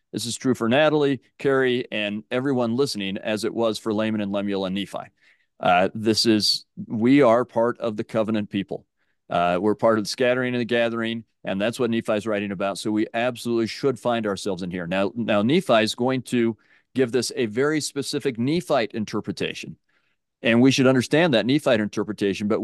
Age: 40-59